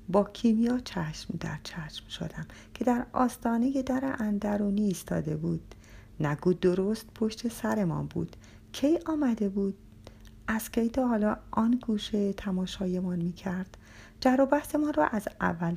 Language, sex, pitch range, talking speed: Persian, female, 155-210 Hz, 135 wpm